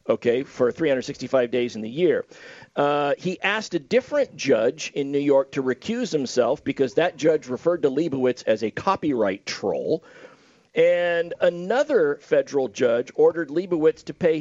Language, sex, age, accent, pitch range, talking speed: English, male, 50-69, American, 140-240 Hz, 155 wpm